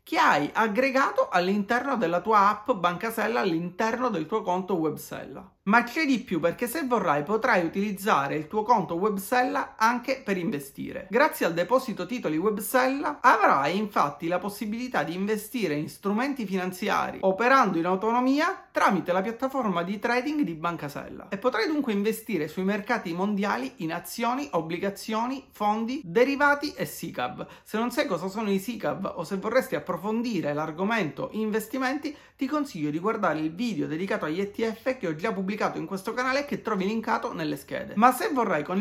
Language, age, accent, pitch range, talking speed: Italian, 30-49, native, 185-250 Hz, 165 wpm